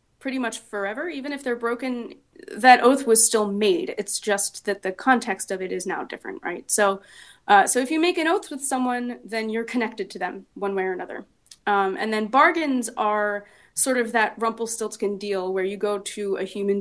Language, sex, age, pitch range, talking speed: English, female, 20-39, 195-250 Hz, 205 wpm